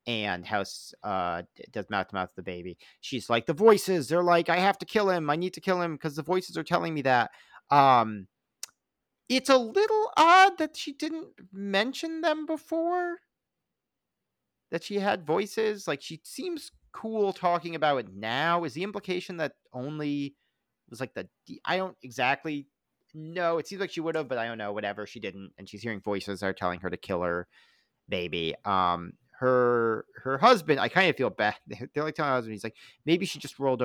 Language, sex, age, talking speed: English, male, 40-59, 200 wpm